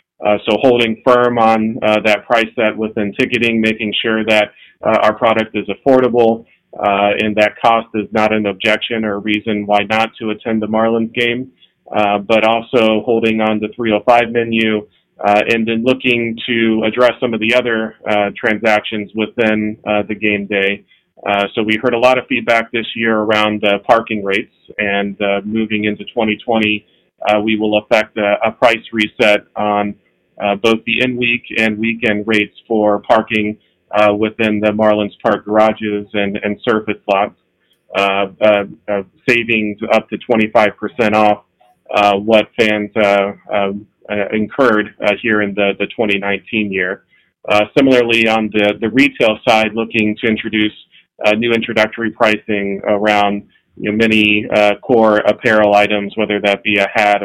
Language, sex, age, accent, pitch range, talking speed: English, male, 30-49, American, 105-115 Hz, 165 wpm